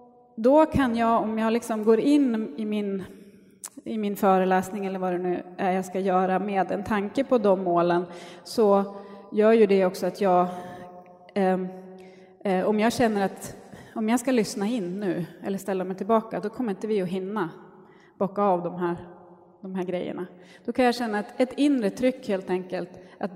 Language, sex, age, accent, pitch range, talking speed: Swedish, female, 30-49, native, 185-230 Hz, 190 wpm